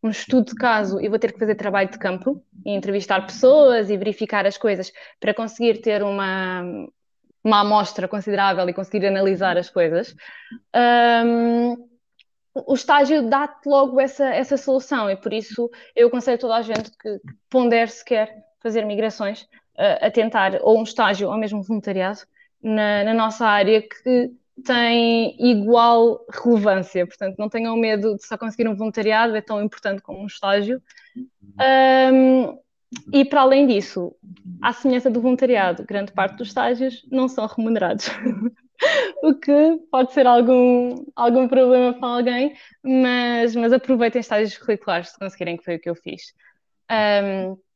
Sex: female